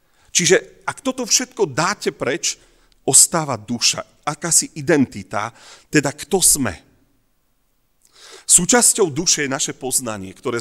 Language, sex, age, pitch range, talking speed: Slovak, male, 40-59, 115-155 Hz, 105 wpm